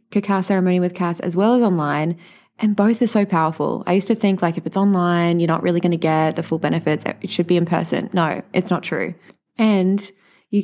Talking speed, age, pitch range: 230 wpm, 20-39, 165-200 Hz